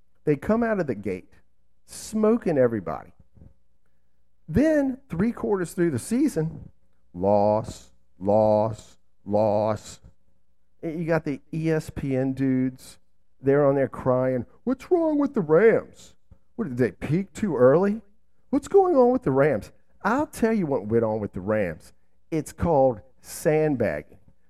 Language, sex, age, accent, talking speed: English, male, 50-69, American, 130 wpm